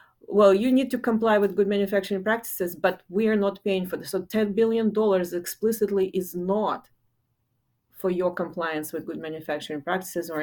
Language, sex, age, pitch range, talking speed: English, female, 30-49, 160-195 Hz, 165 wpm